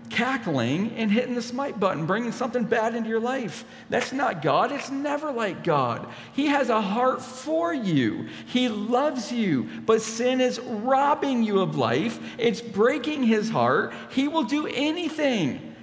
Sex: male